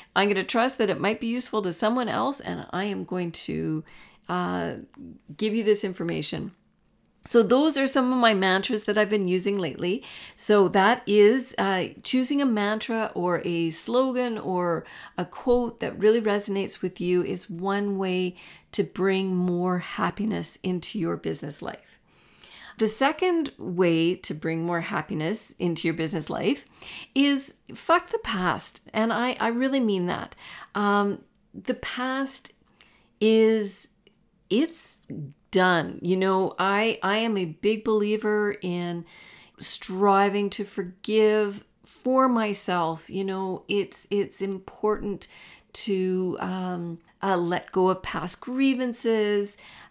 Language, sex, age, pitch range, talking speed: English, female, 40-59, 180-220 Hz, 140 wpm